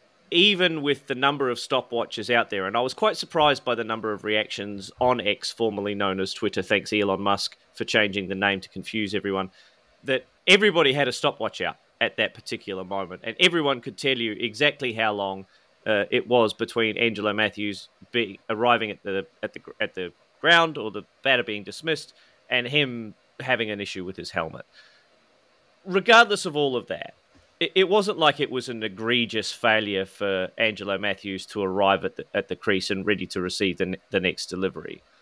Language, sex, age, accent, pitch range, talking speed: English, male, 30-49, Australian, 100-140 Hz, 180 wpm